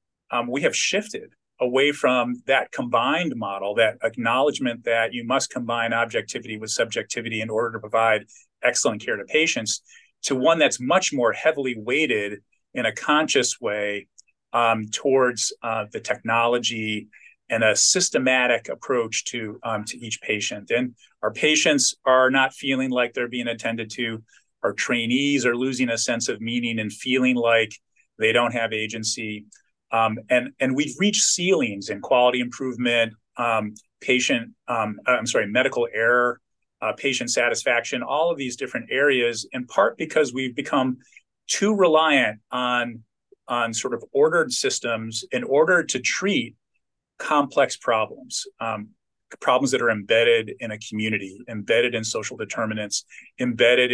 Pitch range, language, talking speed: 110-130 Hz, English, 145 wpm